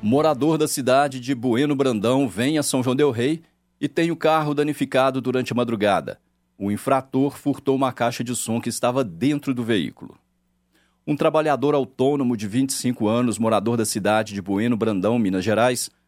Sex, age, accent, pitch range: male, 50-69, Brazilian, 115-135 Hz